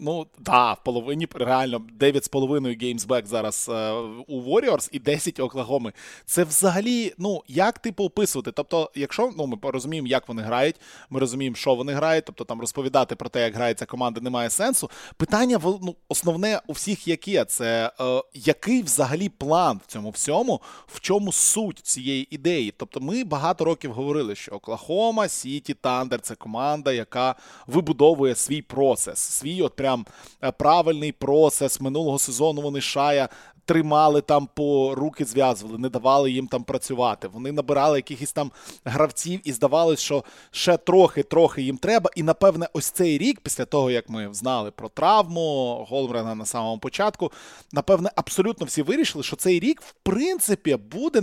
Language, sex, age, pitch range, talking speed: Russian, male, 20-39, 125-170 Hz, 155 wpm